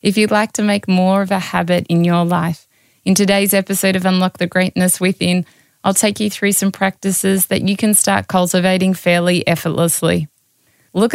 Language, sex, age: English, female, 20-39